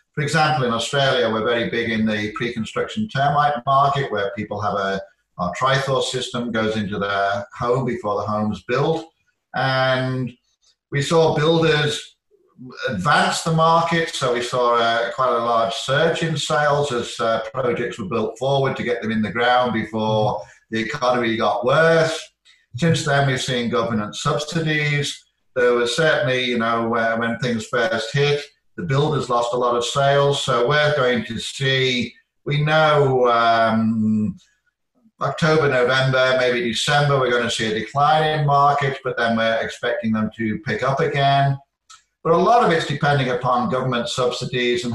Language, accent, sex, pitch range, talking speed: English, British, male, 115-145 Hz, 165 wpm